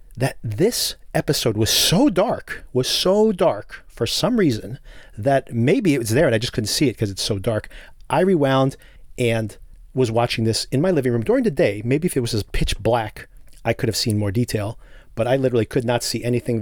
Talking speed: 215 wpm